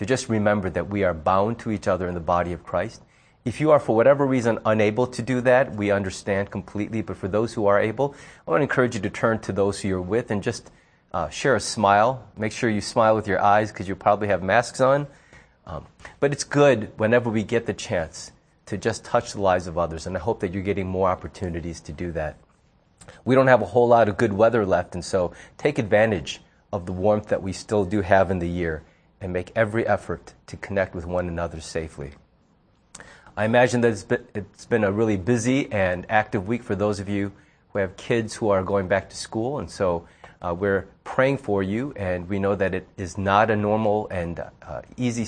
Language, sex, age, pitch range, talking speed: English, male, 30-49, 95-120 Hz, 225 wpm